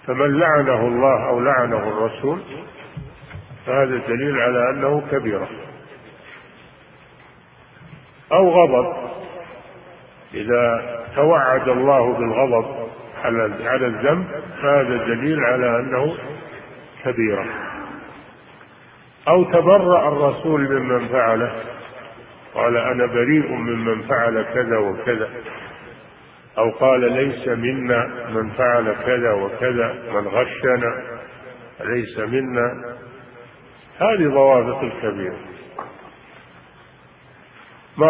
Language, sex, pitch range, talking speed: Arabic, male, 115-140 Hz, 80 wpm